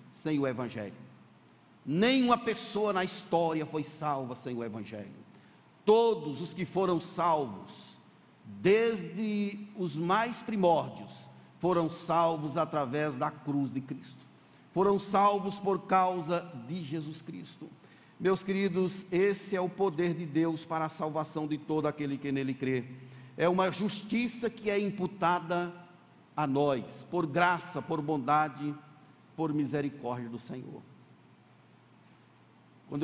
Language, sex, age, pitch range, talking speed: Portuguese, male, 60-79, 145-180 Hz, 125 wpm